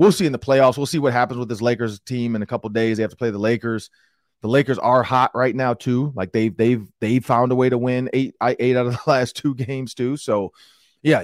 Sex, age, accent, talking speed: male, 30-49, American, 270 wpm